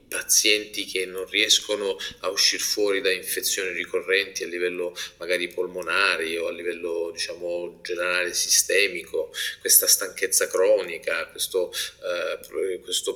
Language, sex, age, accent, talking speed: Italian, male, 30-49, native, 120 wpm